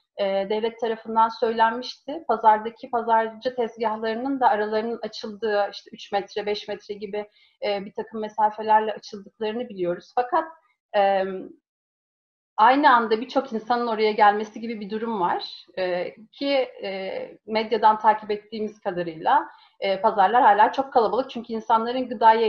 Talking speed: 115 wpm